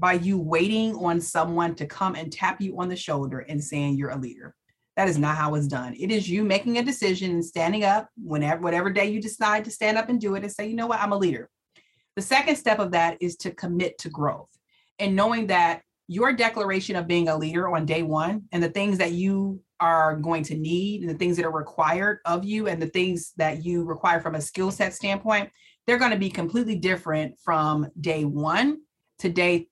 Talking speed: 230 wpm